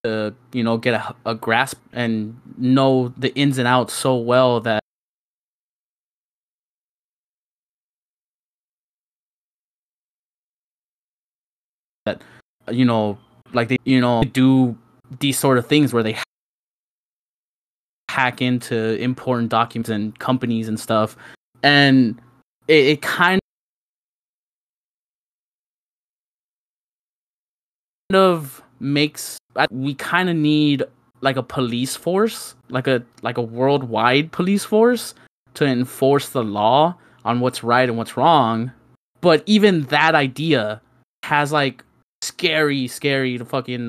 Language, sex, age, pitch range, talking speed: English, male, 20-39, 115-140 Hz, 105 wpm